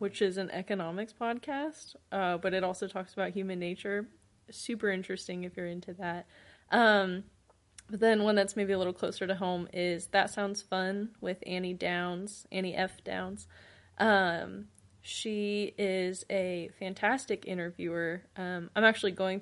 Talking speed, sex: 155 wpm, female